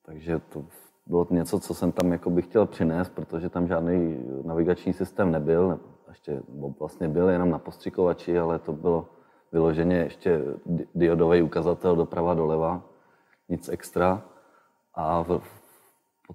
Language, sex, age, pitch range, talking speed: Czech, male, 30-49, 85-95 Hz, 145 wpm